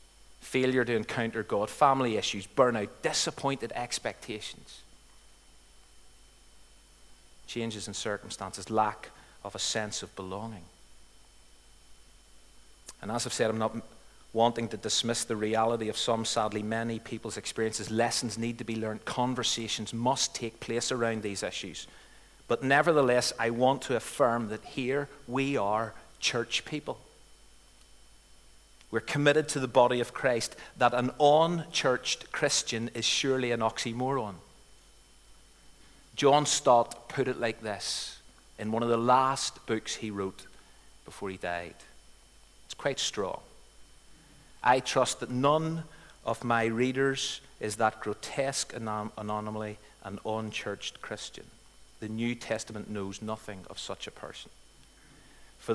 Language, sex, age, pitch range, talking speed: English, male, 40-59, 105-125 Hz, 125 wpm